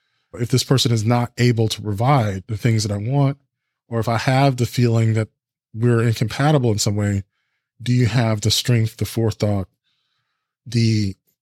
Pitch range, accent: 110-140 Hz, American